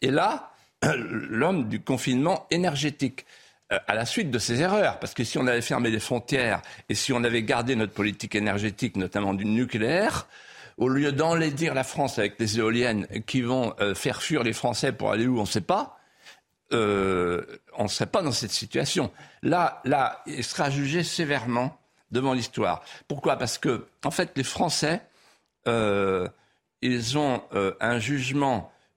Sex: male